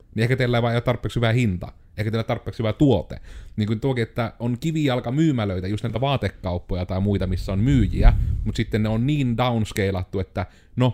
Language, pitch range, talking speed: Finnish, 95-115 Hz, 205 wpm